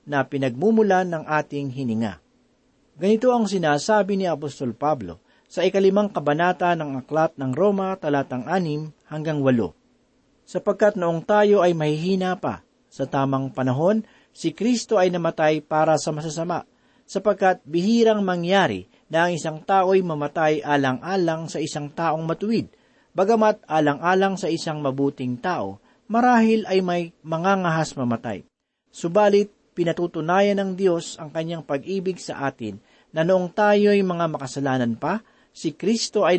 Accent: native